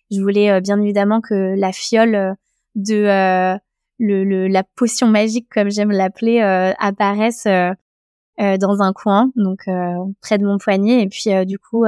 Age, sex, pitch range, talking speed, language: 20-39, female, 200-230 Hz, 170 wpm, French